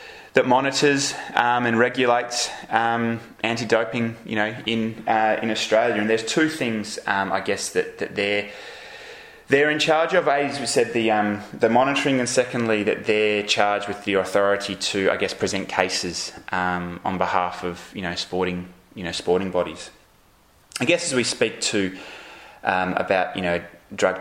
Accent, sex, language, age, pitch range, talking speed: Australian, male, English, 20-39, 95-120 Hz, 170 wpm